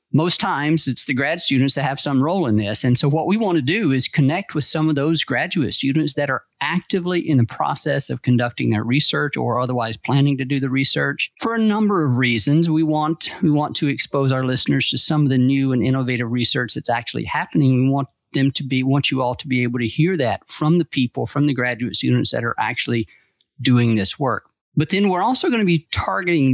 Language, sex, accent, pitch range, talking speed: English, male, American, 125-155 Hz, 235 wpm